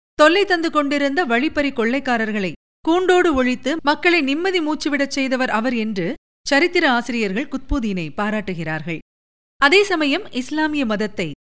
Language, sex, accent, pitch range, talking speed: Tamil, female, native, 215-300 Hz, 110 wpm